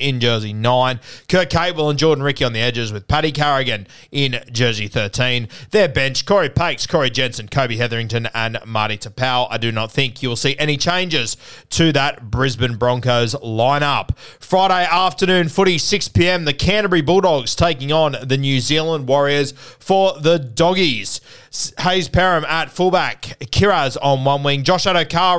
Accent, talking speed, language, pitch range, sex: Australian, 165 wpm, English, 125-155 Hz, male